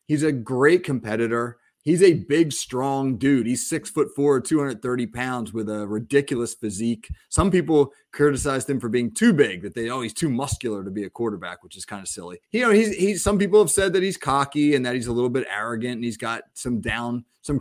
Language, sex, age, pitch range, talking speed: English, male, 30-49, 120-150 Hz, 225 wpm